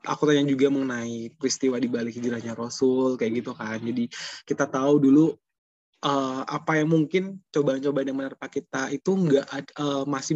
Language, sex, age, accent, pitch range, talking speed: Indonesian, male, 20-39, native, 140-160 Hz, 170 wpm